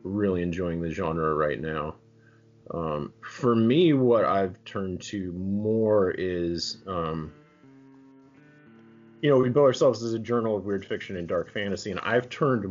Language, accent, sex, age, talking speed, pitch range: English, American, male, 30-49, 155 wpm, 85-115 Hz